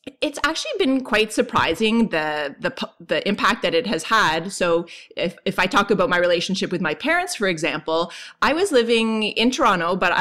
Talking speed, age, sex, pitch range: 190 wpm, 20-39, female, 180-245 Hz